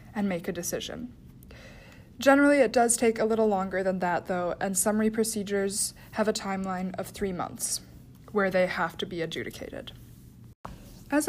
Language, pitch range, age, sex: English, 185-225 Hz, 20-39, female